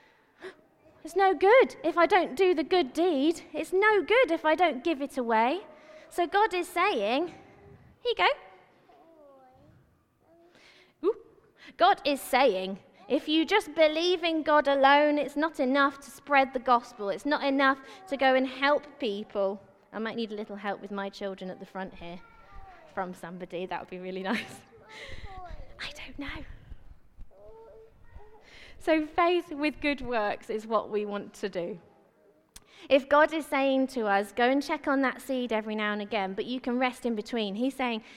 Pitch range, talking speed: 230-335 Hz, 170 wpm